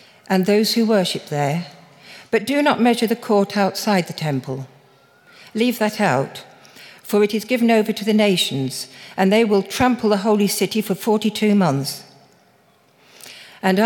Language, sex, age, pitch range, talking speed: English, female, 60-79, 165-215 Hz, 155 wpm